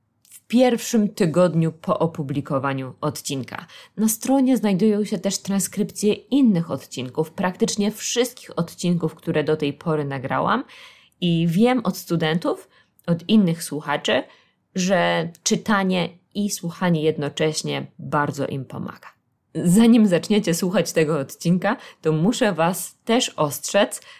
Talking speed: 115 wpm